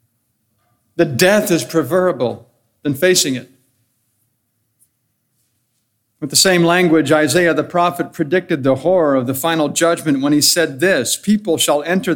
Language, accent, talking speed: English, American, 140 wpm